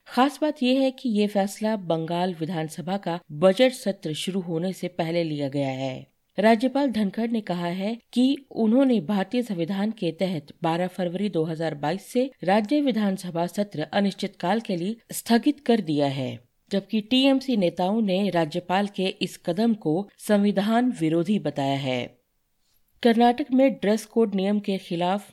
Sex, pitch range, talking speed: female, 165-210 Hz, 155 wpm